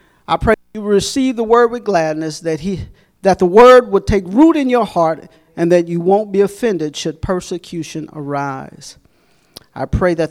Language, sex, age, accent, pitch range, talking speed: English, male, 40-59, American, 145-185 Hz, 185 wpm